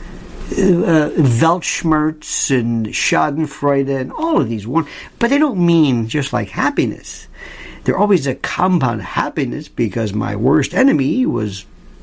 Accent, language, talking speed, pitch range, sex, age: American, English, 135 wpm, 120-180 Hz, male, 50-69